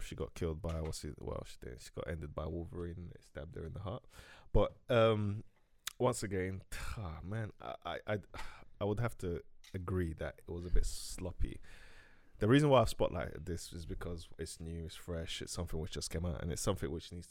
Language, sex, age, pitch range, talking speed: English, male, 20-39, 85-95 Hz, 215 wpm